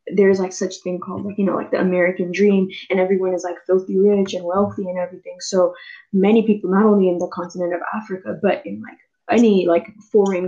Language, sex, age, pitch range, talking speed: English, female, 10-29, 180-205 Hz, 220 wpm